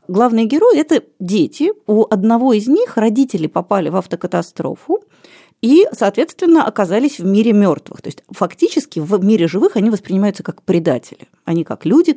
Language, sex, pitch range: Russian, female, 185-240 Hz